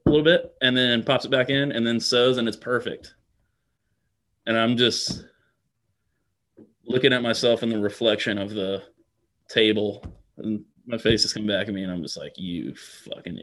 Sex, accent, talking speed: male, American, 185 wpm